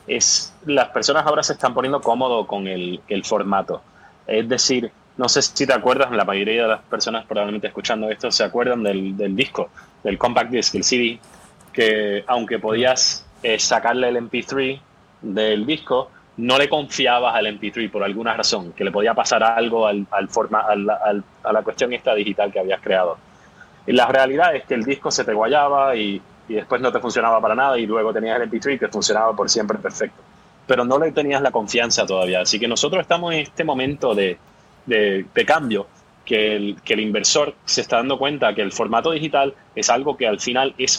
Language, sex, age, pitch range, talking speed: Spanish, male, 20-39, 105-130 Hz, 200 wpm